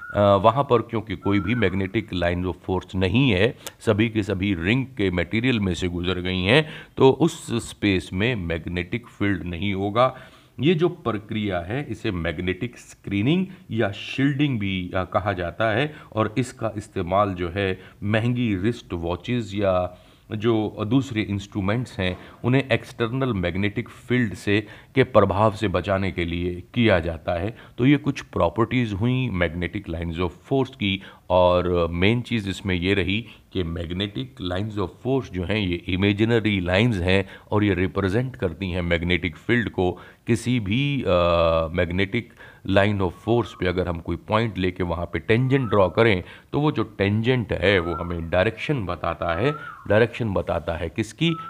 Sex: male